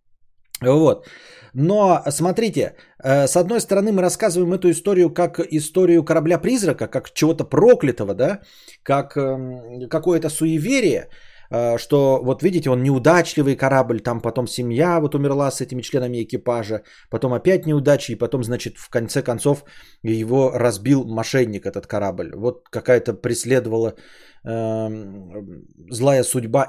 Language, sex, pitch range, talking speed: Bulgarian, male, 125-190 Hz, 130 wpm